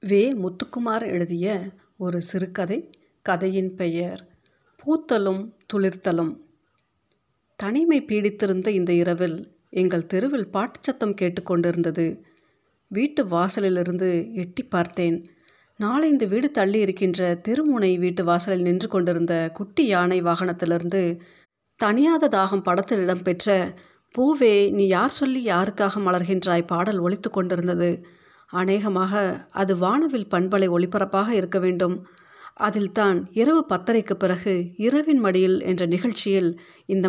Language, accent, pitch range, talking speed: Tamil, native, 180-210 Hz, 100 wpm